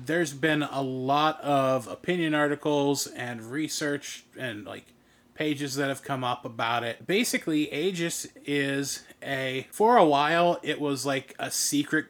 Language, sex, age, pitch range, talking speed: English, male, 30-49, 130-155 Hz, 145 wpm